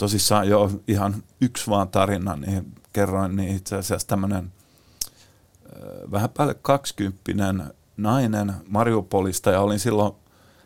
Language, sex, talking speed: Finnish, male, 115 wpm